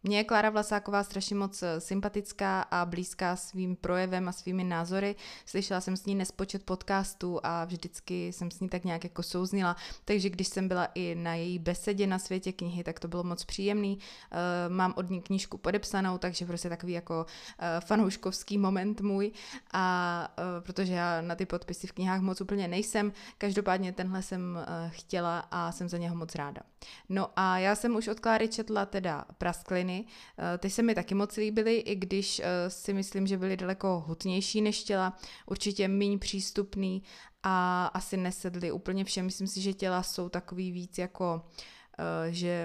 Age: 20-39